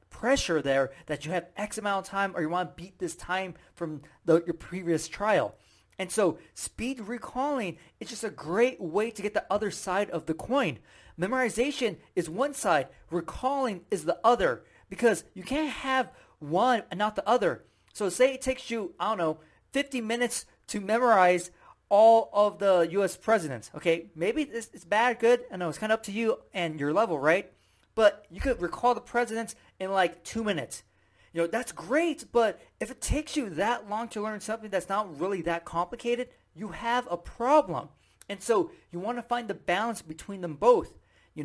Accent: American